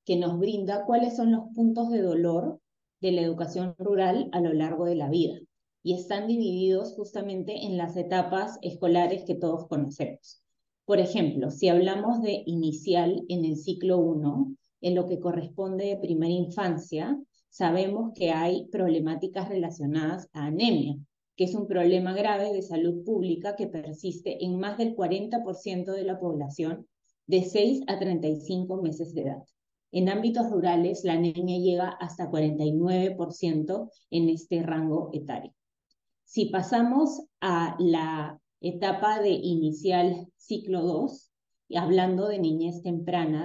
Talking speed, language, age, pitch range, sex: 145 wpm, Spanish, 20-39, 170-200 Hz, female